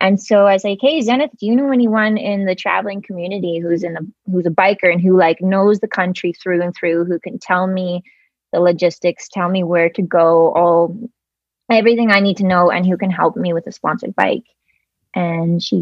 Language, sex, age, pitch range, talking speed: English, female, 20-39, 170-220 Hz, 220 wpm